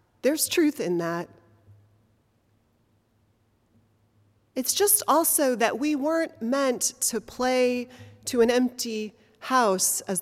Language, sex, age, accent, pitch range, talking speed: English, female, 30-49, American, 165-275 Hz, 105 wpm